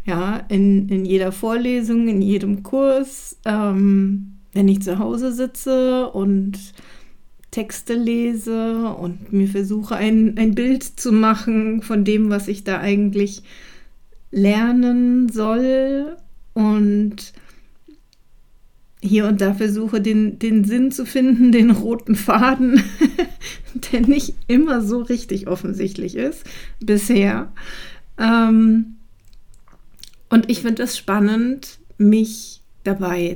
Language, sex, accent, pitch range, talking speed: German, female, German, 200-240 Hz, 110 wpm